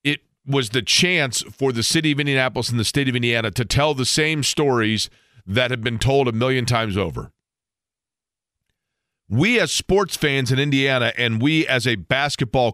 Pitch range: 115-145 Hz